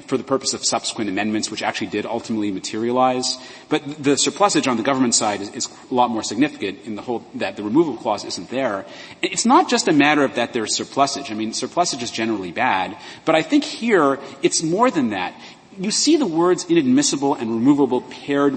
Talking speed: 205 wpm